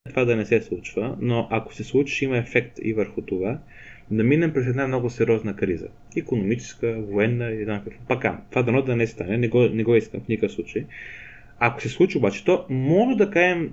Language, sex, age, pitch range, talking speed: Bulgarian, male, 20-39, 110-140 Hz, 200 wpm